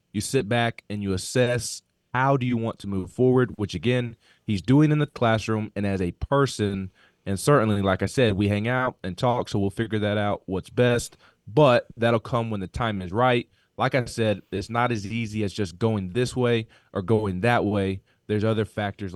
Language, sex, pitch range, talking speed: English, male, 100-125 Hz, 215 wpm